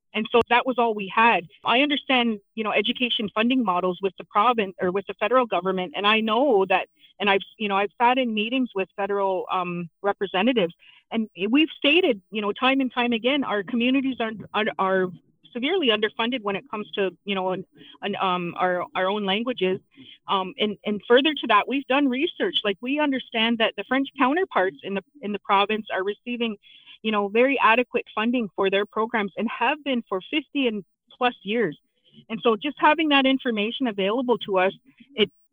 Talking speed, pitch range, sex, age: 205 wpm, 200-255 Hz, female, 30-49